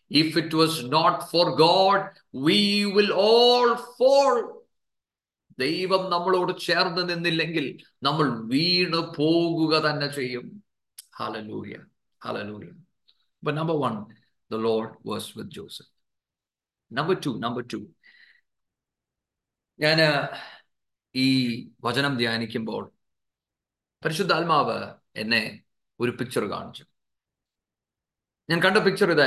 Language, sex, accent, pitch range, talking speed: English, male, Indian, 115-160 Hz, 55 wpm